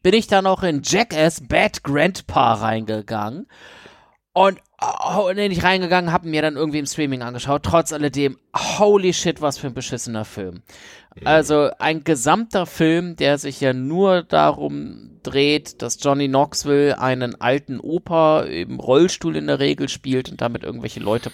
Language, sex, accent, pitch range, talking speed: German, male, German, 130-170 Hz, 155 wpm